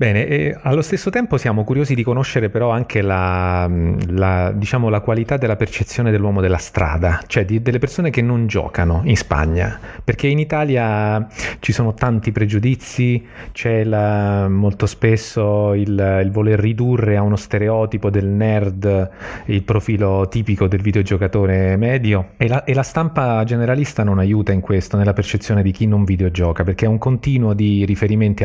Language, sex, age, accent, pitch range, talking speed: Italian, male, 30-49, native, 95-120 Hz, 165 wpm